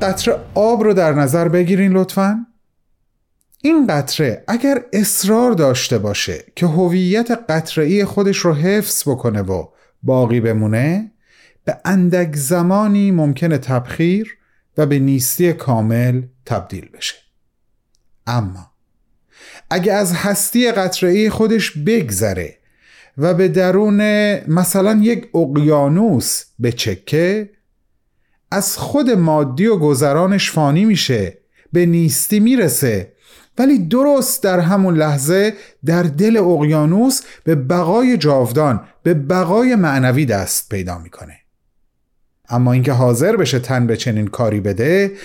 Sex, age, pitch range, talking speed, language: male, 30-49, 130-200 Hz, 110 wpm, Persian